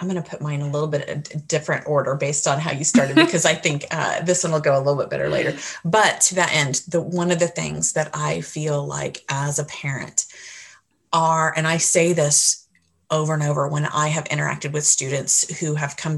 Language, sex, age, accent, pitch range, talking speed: English, female, 30-49, American, 145-170 Hz, 230 wpm